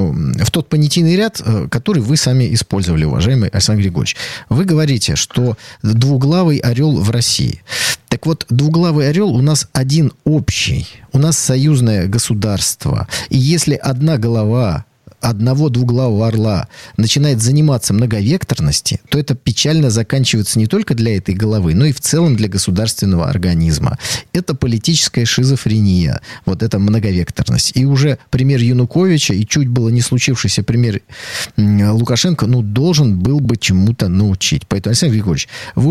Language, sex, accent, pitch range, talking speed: Russian, male, native, 110-150 Hz, 135 wpm